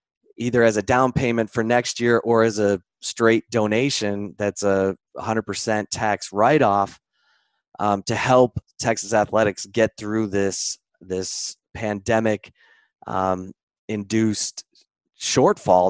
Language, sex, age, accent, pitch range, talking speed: English, male, 20-39, American, 100-115 Hz, 110 wpm